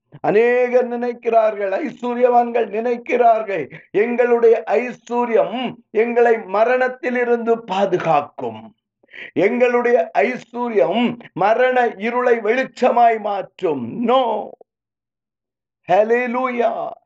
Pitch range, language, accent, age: 225-250 Hz, Tamil, native, 50-69